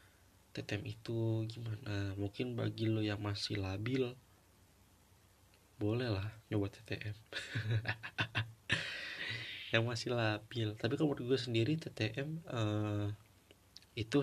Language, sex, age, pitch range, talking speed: Indonesian, male, 20-39, 100-125 Hz, 95 wpm